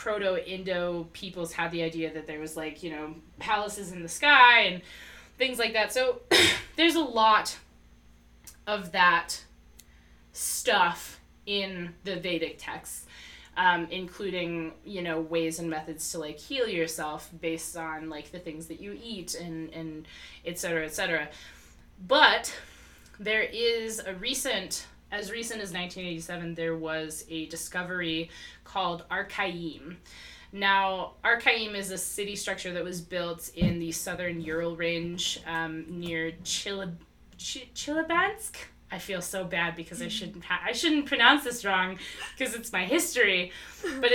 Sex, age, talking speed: female, 20-39, 145 wpm